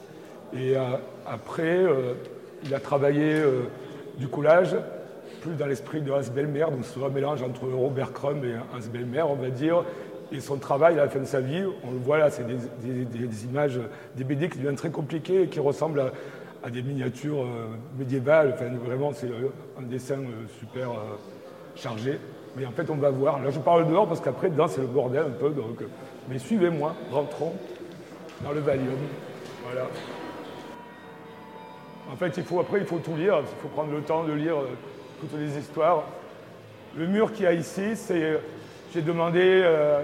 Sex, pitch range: male, 135-165 Hz